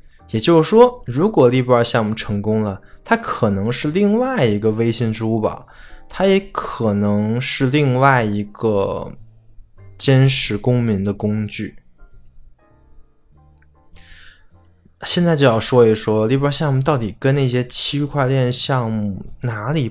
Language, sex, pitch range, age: Chinese, male, 105-145 Hz, 20-39